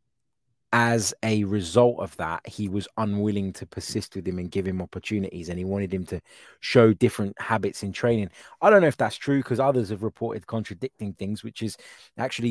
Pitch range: 95-120 Hz